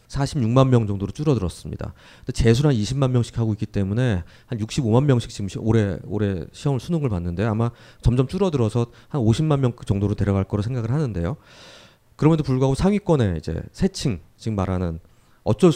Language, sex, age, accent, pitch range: Korean, male, 30-49, native, 105-140 Hz